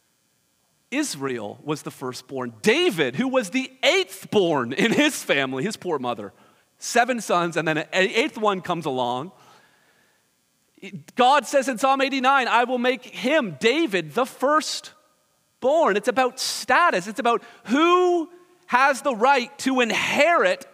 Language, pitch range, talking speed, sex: English, 195-285 Hz, 135 wpm, male